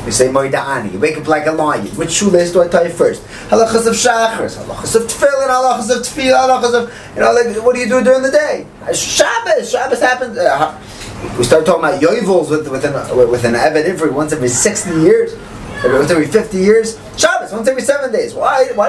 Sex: male